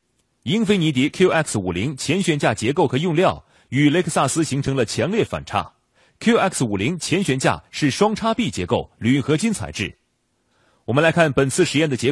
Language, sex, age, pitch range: Chinese, male, 30-49, 120-180 Hz